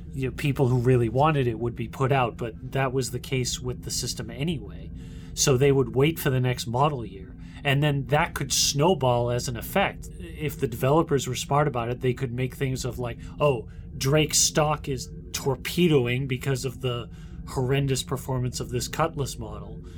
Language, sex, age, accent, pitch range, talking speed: English, male, 30-49, American, 120-140 Hz, 190 wpm